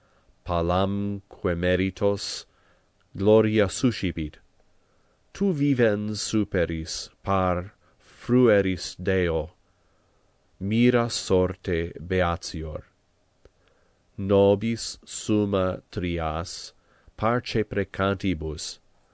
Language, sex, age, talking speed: English, male, 40-59, 55 wpm